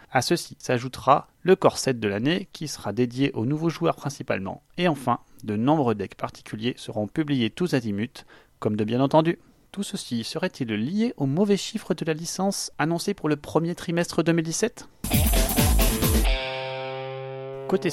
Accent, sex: French, male